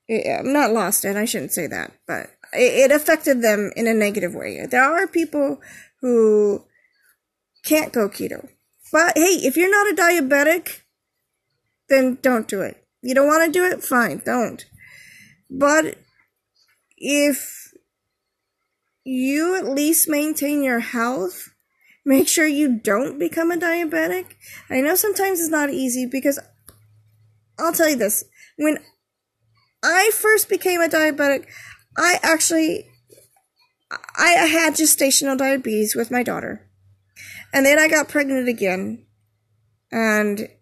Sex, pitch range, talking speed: female, 215-315 Hz, 135 wpm